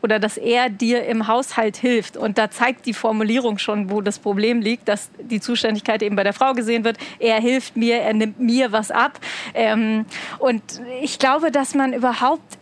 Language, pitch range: German, 220-250 Hz